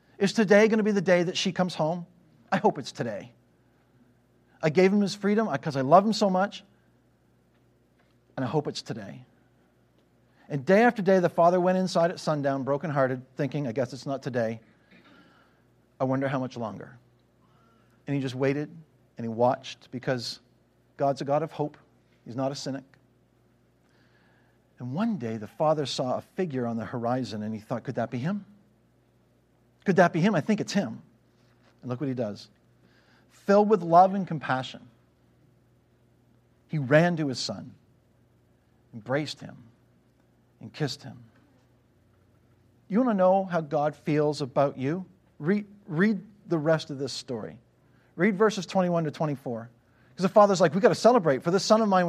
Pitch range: 125-190 Hz